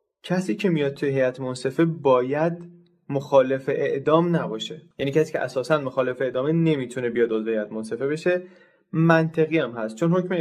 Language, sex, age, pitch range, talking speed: Persian, male, 20-39, 120-155 Hz, 145 wpm